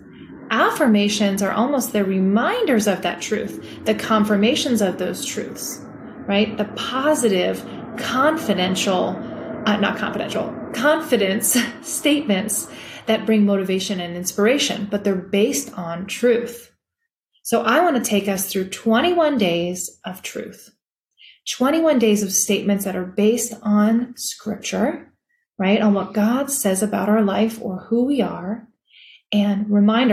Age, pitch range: 30-49, 195-240 Hz